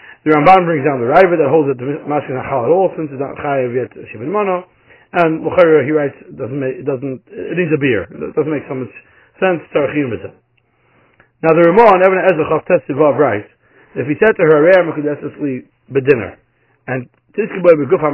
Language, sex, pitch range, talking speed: English, male, 135-180 Hz, 210 wpm